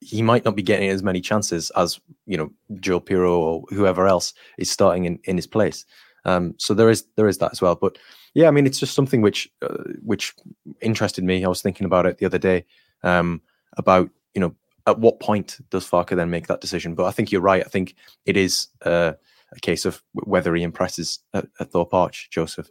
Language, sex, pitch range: English, male, 90-105 Hz